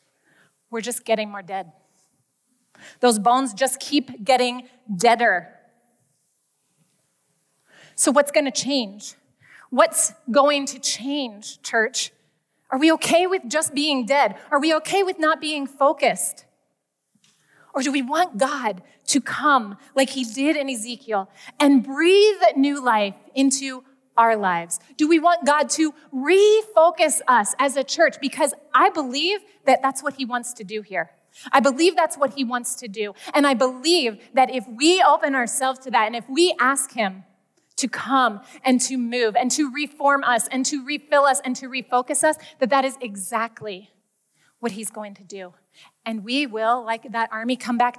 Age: 30-49